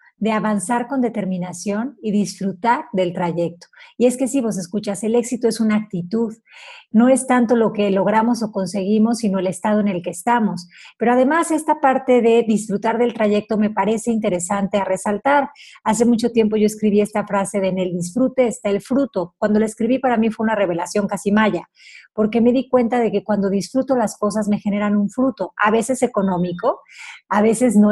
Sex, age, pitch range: female, 40-59, 195-235 Hz